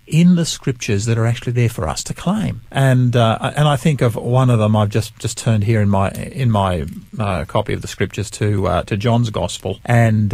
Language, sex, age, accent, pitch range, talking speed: English, male, 50-69, Australian, 100-120 Hz, 230 wpm